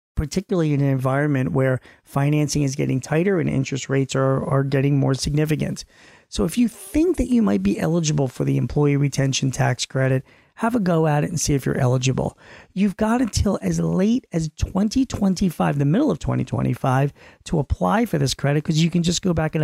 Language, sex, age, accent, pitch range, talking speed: English, male, 40-59, American, 135-165 Hz, 200 wpm